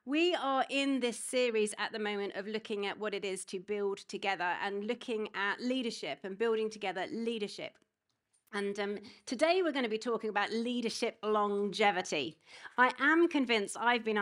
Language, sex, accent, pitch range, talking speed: English, female, British, 210-280 Hz, 170 wpm